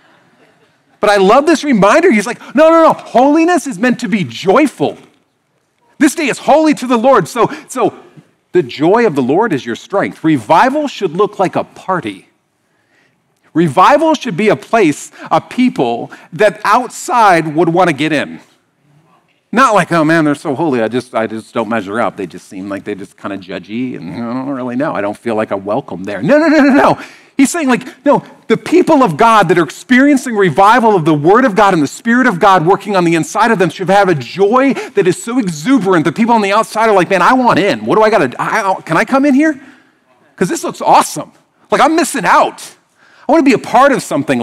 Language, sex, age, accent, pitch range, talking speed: English, male, 50-69, American, 155-260 Hz, 220 wpm